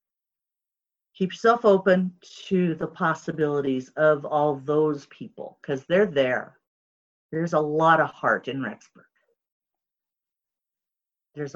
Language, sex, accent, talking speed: English, female, American, 110 wpm